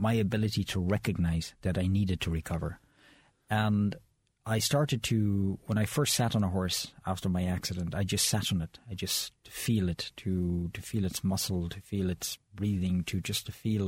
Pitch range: 95-120 Hz